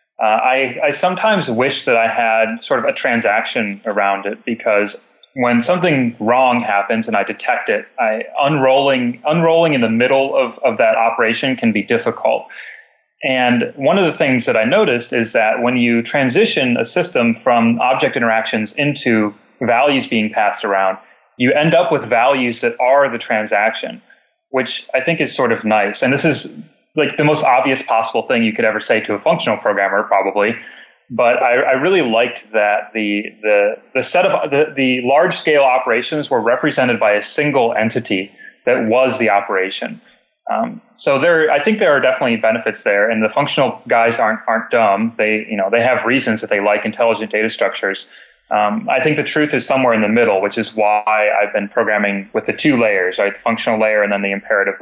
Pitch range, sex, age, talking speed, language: 105-135 Hz, male, 30-49, 190 wpm, English